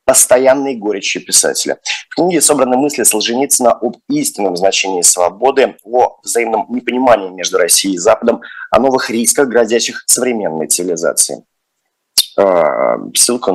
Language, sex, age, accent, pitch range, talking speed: Russian, male, 30-49, native, 115-145 Hz, 120 wpm